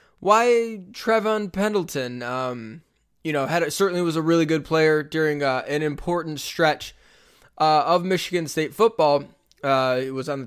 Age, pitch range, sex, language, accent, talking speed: 20-39, 145-180 Hz, male, English, American, 160 wpm